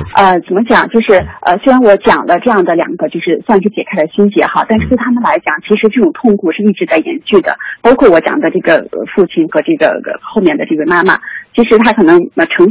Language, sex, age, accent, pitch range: Chinese, female, 30-49, native, 200-315 Hz